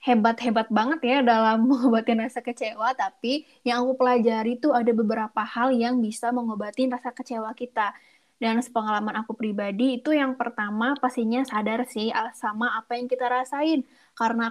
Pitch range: 230-270 Hz